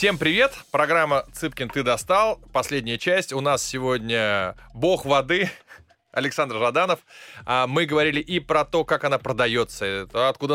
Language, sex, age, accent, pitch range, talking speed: Russian, male, 20-39, native, 125-160 Hz, 135 wpm